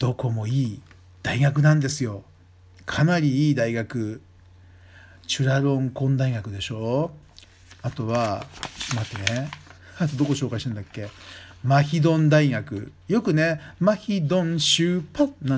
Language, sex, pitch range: Japanese, male, 90-145 Hz